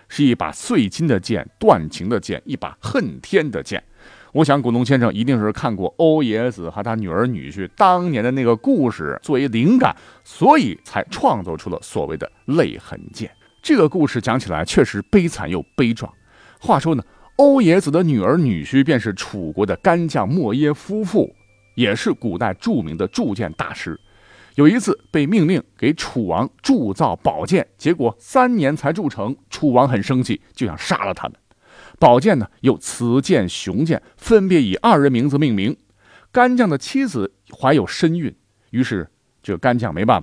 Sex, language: male, Chinese